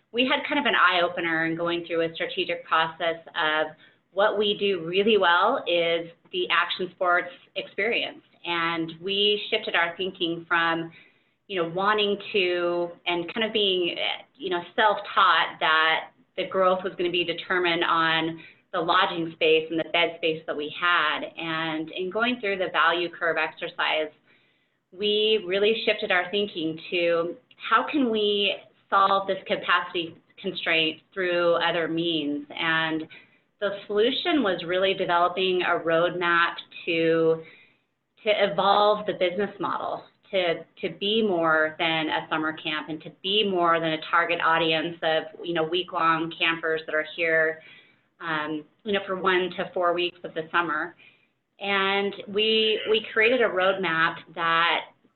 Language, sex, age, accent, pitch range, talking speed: English, female, 30-49, American, 165-195 Hz, 150 wpm